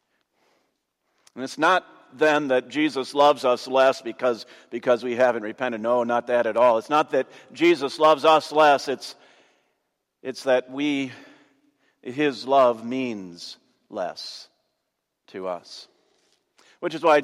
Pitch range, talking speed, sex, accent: 130-185 Hz, 135 wpm, male, American